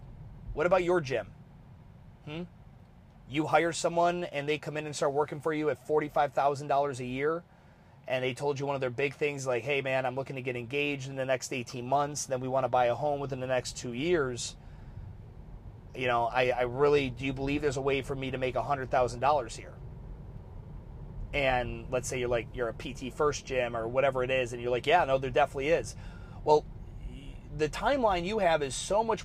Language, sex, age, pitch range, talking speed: English, male, 30-49, 130-160 Hz, 210 wpm